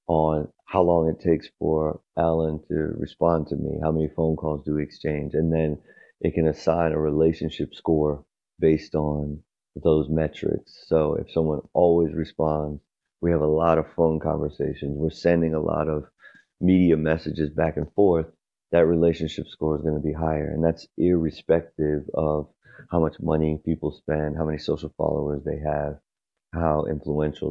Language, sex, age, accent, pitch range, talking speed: English, male, 30-49, American, 75-80 Hz, 170 wpm